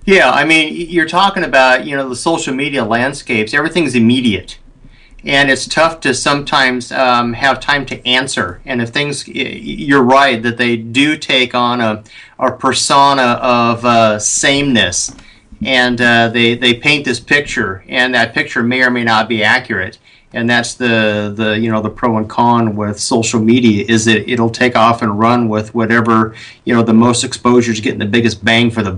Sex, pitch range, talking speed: male, 110-130 Hz, 185 wpm